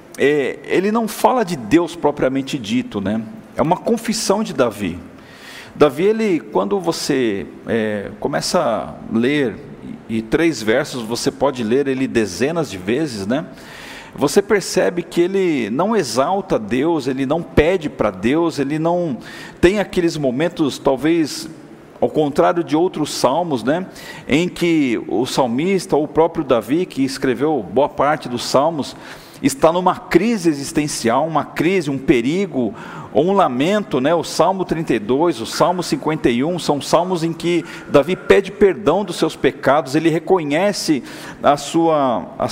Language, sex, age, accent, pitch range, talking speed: Portuguese, male, 40-59, Brazilian, 150-205 Hz, 145 wpm